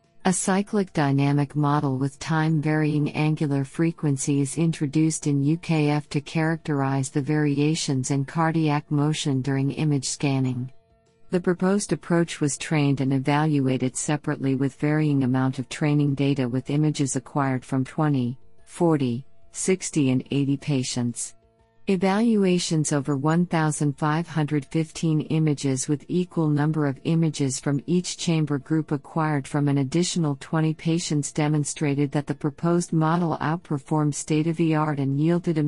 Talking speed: 130 wpm